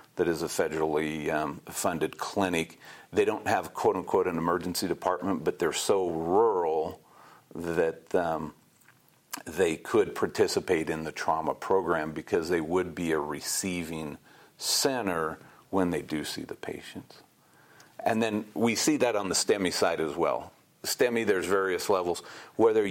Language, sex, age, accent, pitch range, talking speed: English, male, 50-69, American, 80-100 Hz, 150 wpm